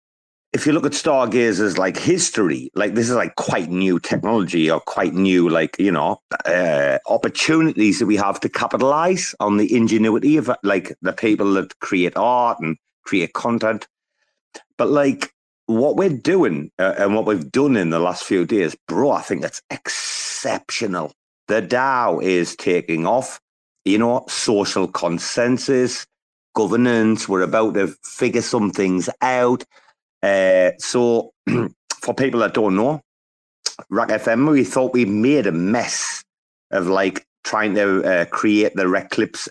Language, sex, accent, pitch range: English, male, British, 95-120 Hz